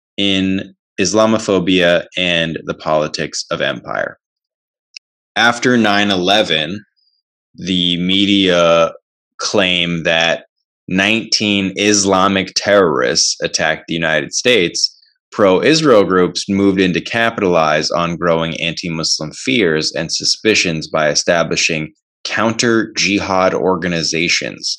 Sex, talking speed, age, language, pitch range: male, 85 wpm, 20-39, English, 85-100 Hz